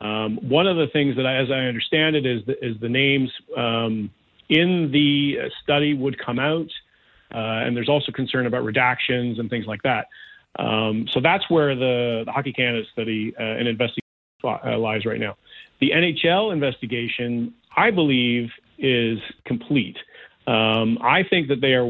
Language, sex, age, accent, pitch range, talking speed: English, male, 40-59, American, 115-140 Hz, 170 wpm